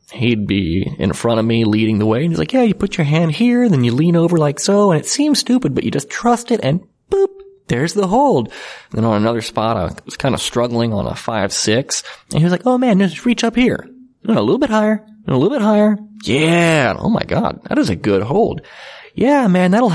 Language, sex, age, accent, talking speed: English, male, 30-49, American, 255 wpm